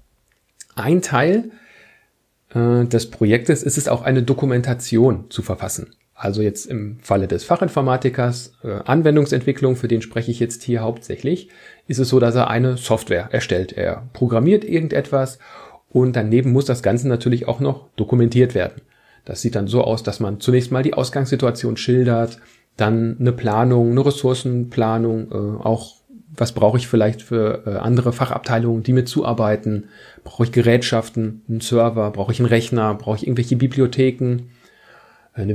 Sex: male